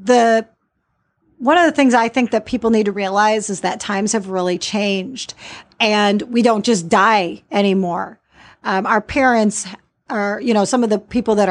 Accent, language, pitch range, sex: American, English, 205-250 Hz, female